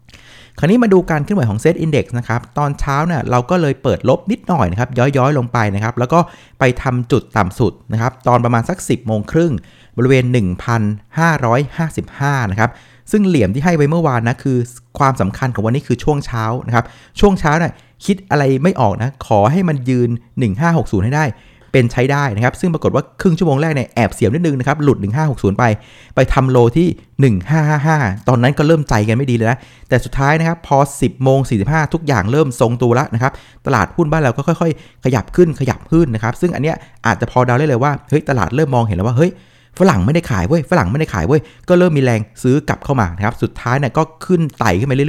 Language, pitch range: Thai, 115-150 Hz